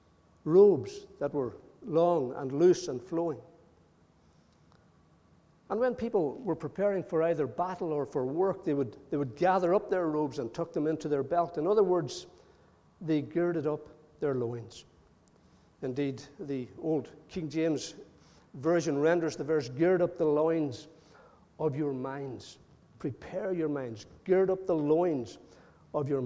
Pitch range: 140-185 Hz